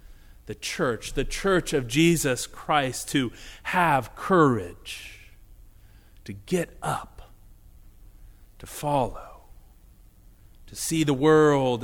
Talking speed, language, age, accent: 95 wpm, English, 30-49, American